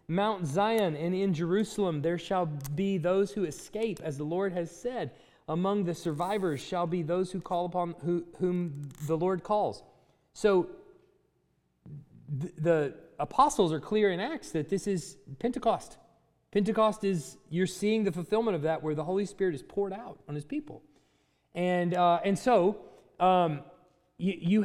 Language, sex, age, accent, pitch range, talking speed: English, male, 30-49, American, 160-210 Hz, 160 wpm